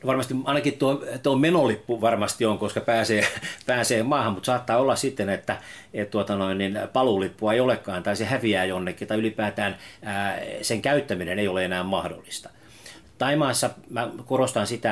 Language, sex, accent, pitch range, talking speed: Finnish, male, native, 100-125 Hz, 155 wpm